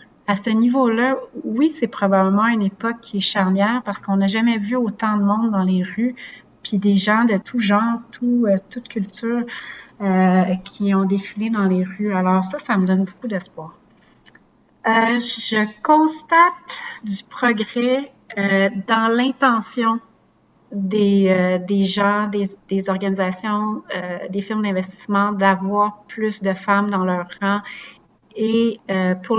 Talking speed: 145 wpm